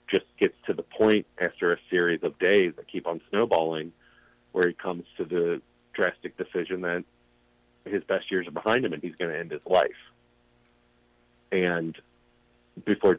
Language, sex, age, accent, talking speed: English, male, 40-59, American, 170 wpm